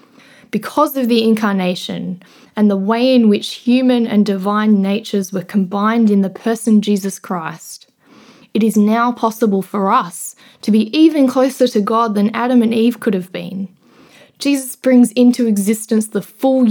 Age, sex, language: 20-39, female, English